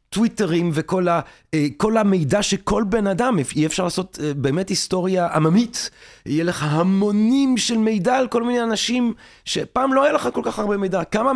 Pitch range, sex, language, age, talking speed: 160-215 Hz, male, Hebrew, 30-49, 160 wpm